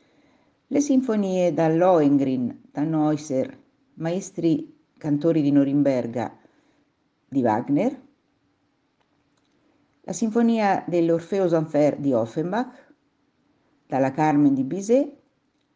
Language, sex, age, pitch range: Italian, female, 50-69, 145-235 Hz